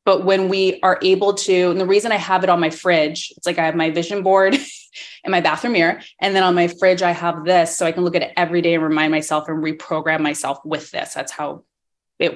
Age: 20-39